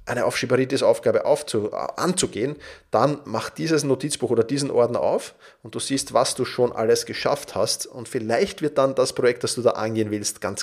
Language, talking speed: German, 190 wpm